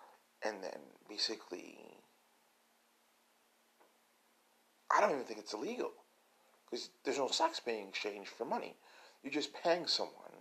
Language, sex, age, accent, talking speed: English, male, 40-59, American, 120 wpm